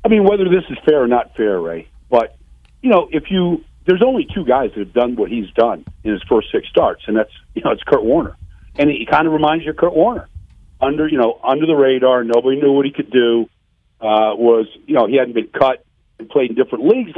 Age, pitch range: 50-69, 110-150 Hz